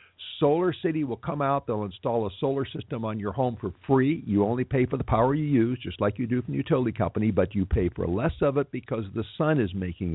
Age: 50-69